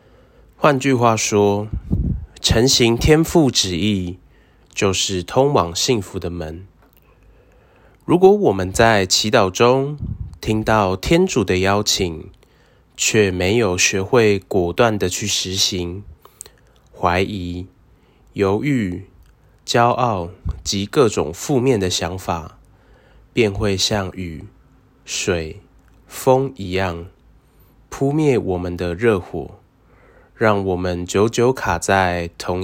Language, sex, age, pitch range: Chinese, male, 20-39, 90-115 Hz